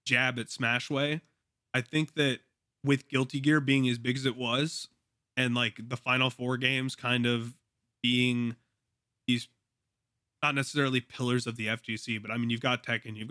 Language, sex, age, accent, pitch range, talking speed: English, male, 20-39, American, 110-125 Hz, 170 wpm